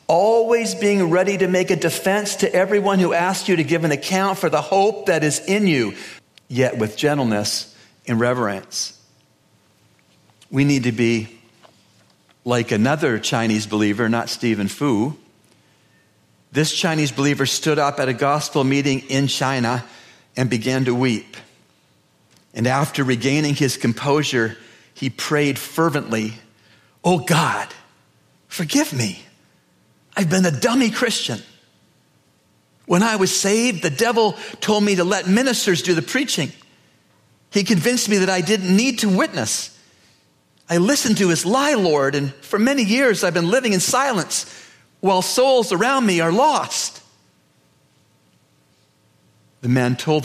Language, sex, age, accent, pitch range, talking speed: English, male, 50-69, American, 115-190 Hz, 140 wpm